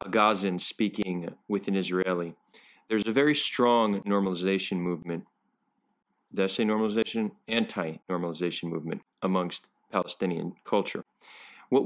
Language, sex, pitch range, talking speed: English, male, 95-110 Hz, 105 wpm